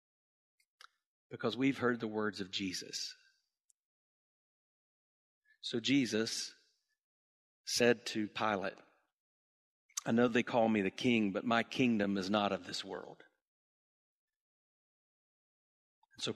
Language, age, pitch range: English, 50-69, 110-145 Hz